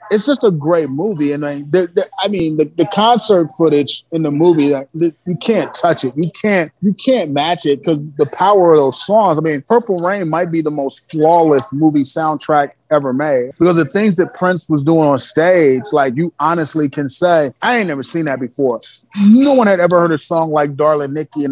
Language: English